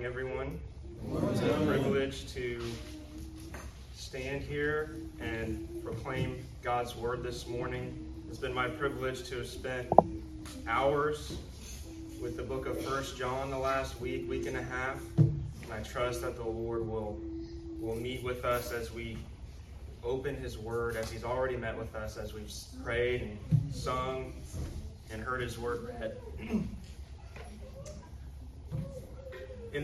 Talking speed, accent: 135 wpm, American